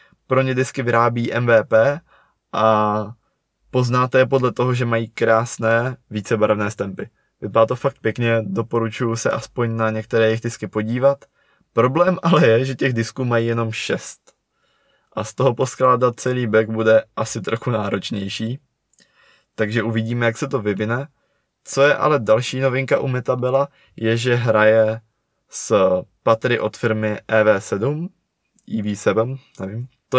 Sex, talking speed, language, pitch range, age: male, 140 wpm, Czech, 110-125 Hz, 20-39